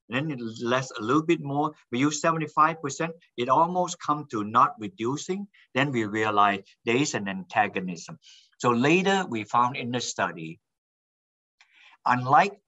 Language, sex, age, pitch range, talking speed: English, male, 50-69, 105-150 Hz, 145 wpm